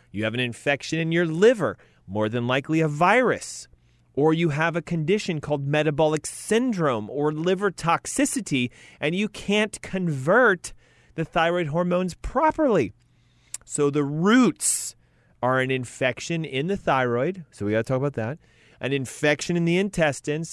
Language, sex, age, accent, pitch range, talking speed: English, male, 30-49, American, 120-185 Hz, 150 wpm